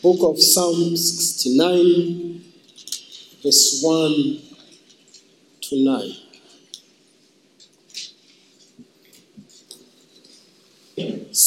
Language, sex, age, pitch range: English, male, 50-69, 170-210 Hz